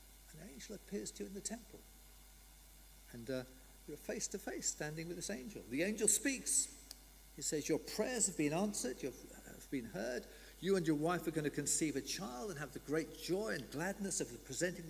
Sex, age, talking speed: male, 50-69, 210 wpm